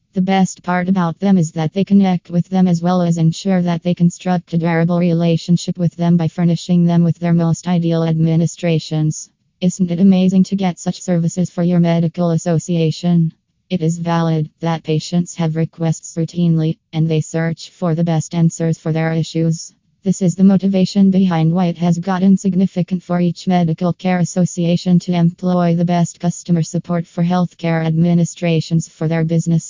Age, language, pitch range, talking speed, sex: 20-39, English, 165-180 Hz, 175 wpm, female